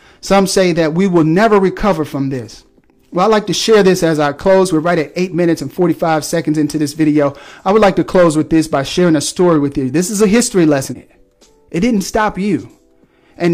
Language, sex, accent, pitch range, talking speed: English, male, American, 150-195 Hz, 230 wpm